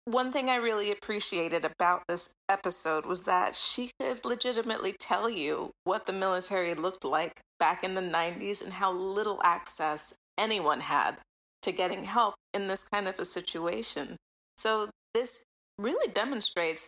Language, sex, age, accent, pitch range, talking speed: English, female, 30-49, American, 175-220 Hz, 155 wpm